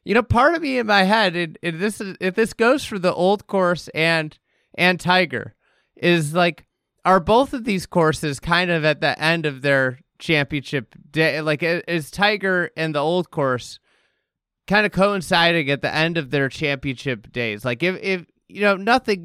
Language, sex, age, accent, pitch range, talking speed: English, male, 30-49, American, 160-195 Hz, 185 wpm